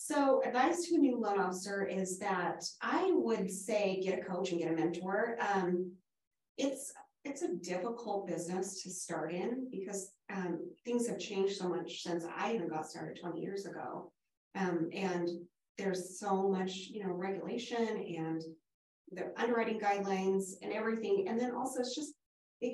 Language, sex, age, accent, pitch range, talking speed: English, female, 30-49, American, 185-230 Hz, 165 wpm